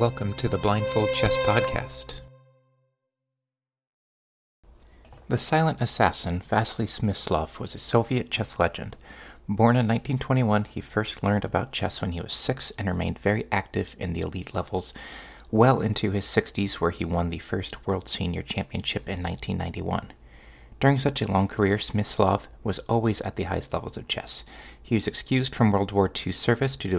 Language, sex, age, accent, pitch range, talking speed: English, male, 30-49, American, 90-120 Hz, 165 wpm